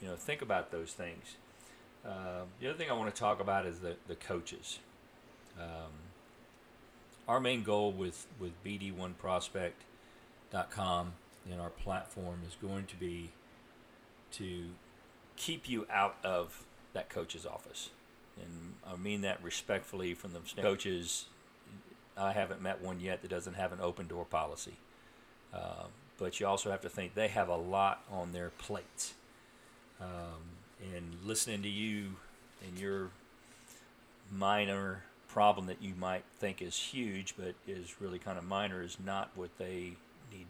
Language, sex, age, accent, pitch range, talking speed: English, male, 40-59, American, 90-105 Hz, 150 wpm